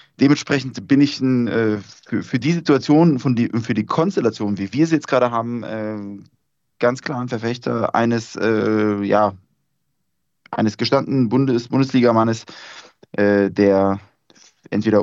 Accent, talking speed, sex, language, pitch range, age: German, 135 wpm, male, German, 110-135 Hz, 20-39